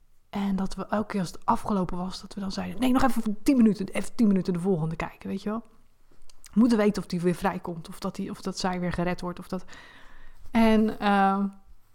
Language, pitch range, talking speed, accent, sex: Dutch, 170-205 Hz, 235 wpm, Dutch, female